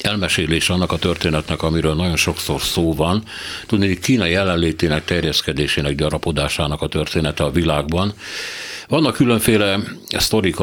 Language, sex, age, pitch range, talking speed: Hungarian, male, 60-79, 80-95 Hz, 125 wpm